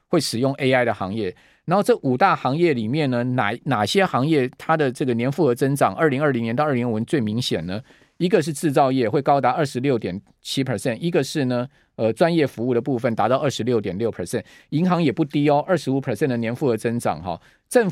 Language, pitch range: Chinese, 120-160 Hz